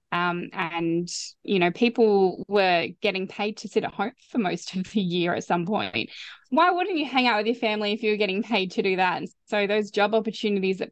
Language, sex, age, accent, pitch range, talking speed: English, female, 20-39, Australian, 185-220 Hz, 230 wpm